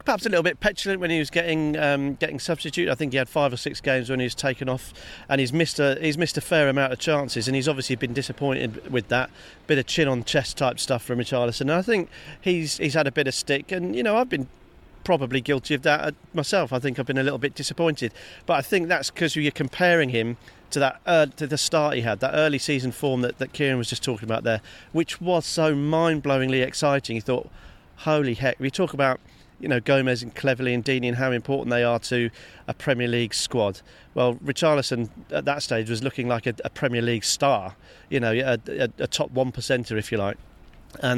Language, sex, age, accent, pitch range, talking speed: English, male, 40-59, British, 125-150 Hz, 235 wpm